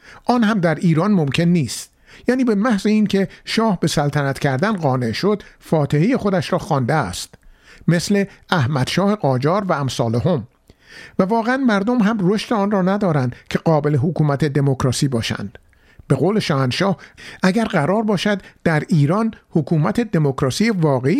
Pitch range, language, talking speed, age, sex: 140-195 Hz, Persian, 145 wpm, 50-69, male